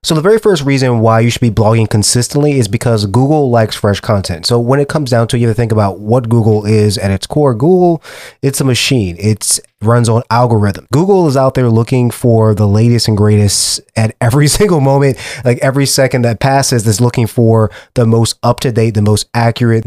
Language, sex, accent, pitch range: English, male, American, 110-135 Hz